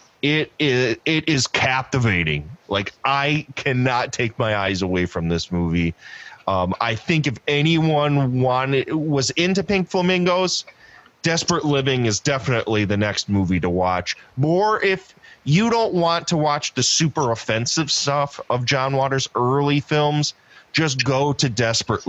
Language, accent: English, American